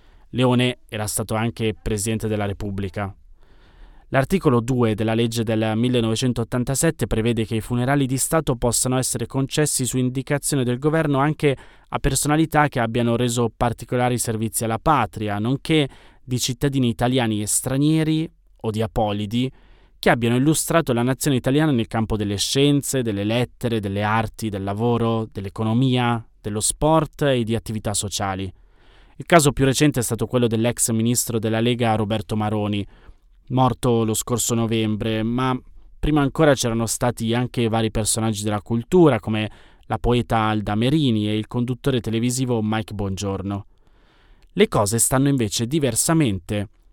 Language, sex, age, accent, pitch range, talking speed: Italian, male, 20-39, native, 110-130 Hz, 140 wpm